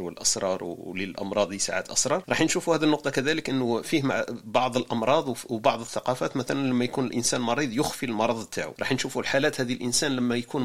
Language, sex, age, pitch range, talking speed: Arabic, male, 40-59, 110-130 Hz, 175 wpm